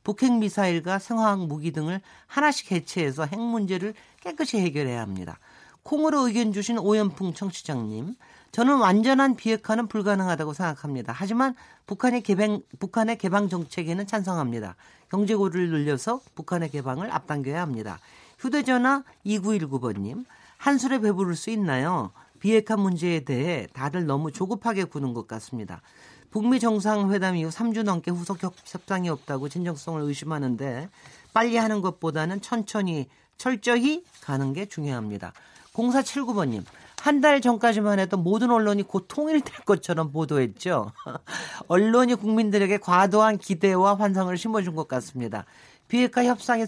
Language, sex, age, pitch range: Korean, male, 40-59, 160-225 Hz